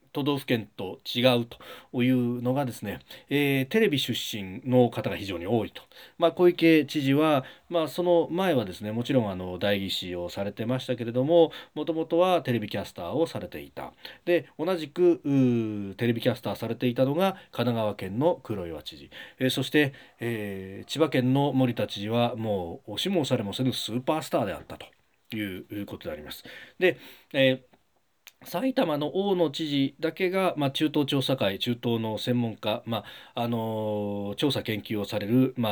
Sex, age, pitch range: male, 40-59, 105-145 Hz